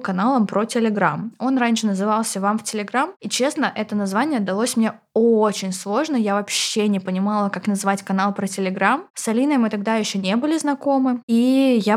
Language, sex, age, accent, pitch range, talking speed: Russian, female, 20-39, native, 200-245 Hz, 180 wpm